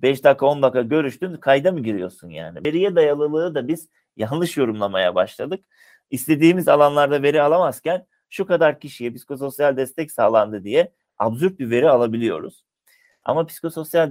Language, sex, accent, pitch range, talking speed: Turkish, male, native, 100-150 Hz, 140 wpm